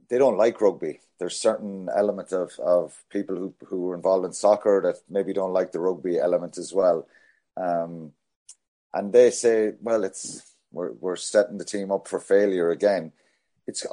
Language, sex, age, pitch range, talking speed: English, male, 30-49, 95-130 Hz, 175 wpm